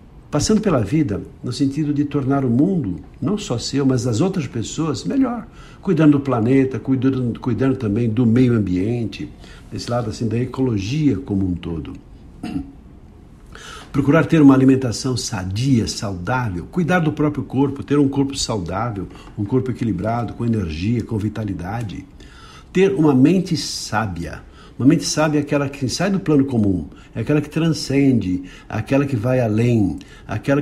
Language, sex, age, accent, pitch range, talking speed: Portuguese, male, 60-79, Brazilian, 110-145 Hz, 150 wpm